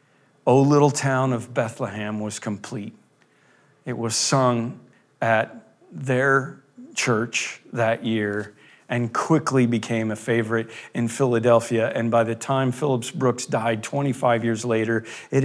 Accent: American